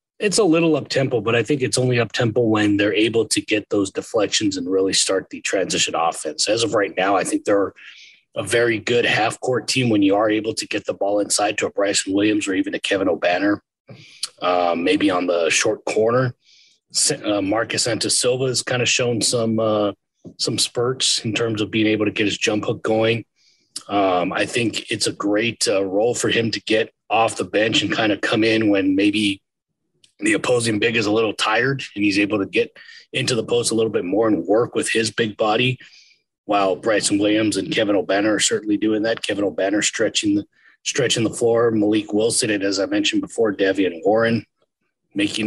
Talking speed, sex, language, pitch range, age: 205 wpm, male, English, 105-125 Hz, 30-49